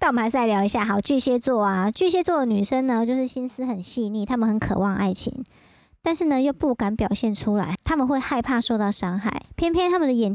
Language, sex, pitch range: Chinese, male, 205-255 Hz